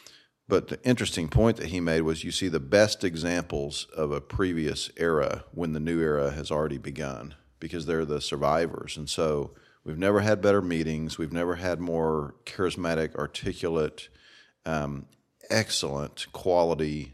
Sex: male